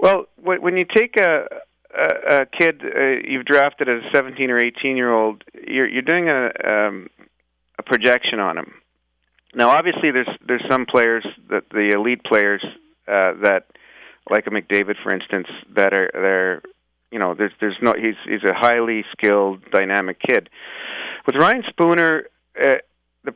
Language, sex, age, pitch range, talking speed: English, male, 40-59, 105-140 Hz, 165 wpm